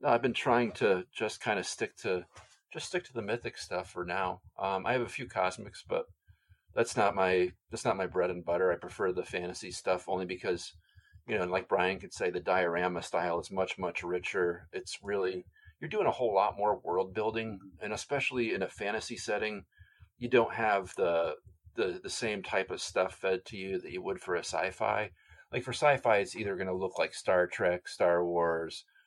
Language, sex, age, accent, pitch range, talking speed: English, male, 40-59, American, 90-120 Hz, 215 wpm